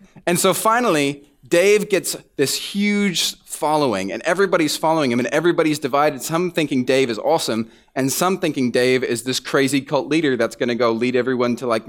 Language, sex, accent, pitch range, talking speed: English, male, American, 125-155 Hz, 180 wpm